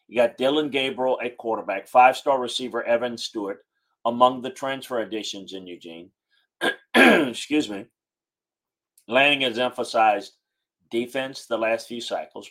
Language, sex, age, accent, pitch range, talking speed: English, male, 40-59, American, 110-140 Hz, 125 wpm